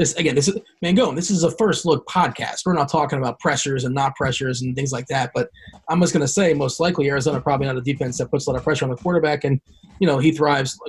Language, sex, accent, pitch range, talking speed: English, male, American, 135-165 Hz, 275 wpm